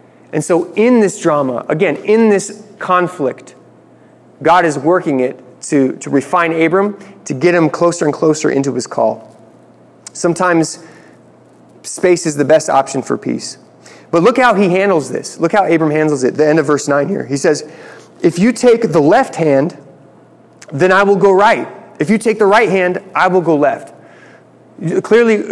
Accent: American